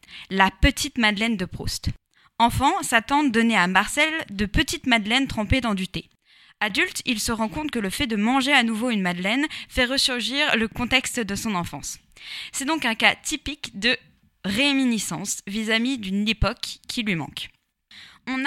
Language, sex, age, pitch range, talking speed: French, female, 20-39, 220-280 Hz, 170 wpm